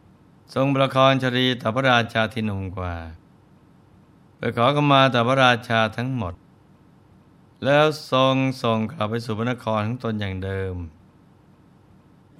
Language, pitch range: Thai, 110-130 Hz